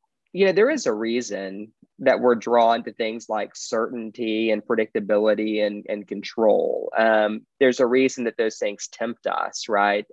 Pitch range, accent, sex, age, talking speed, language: 110-130 Hz, American, male, 20-39, 165 wpm, English